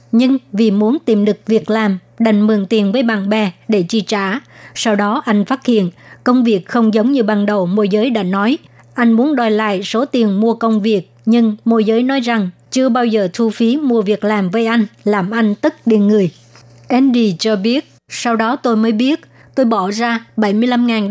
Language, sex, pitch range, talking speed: Vietnamese, male, 210-235 Hz, 210 wpm